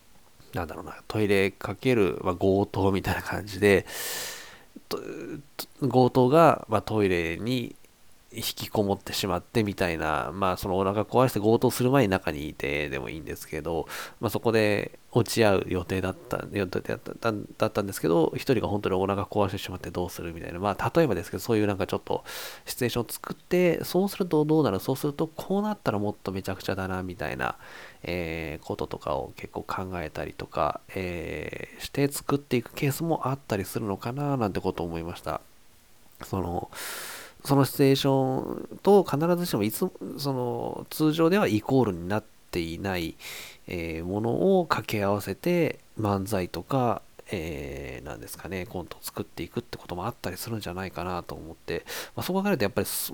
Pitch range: 90-130 Hz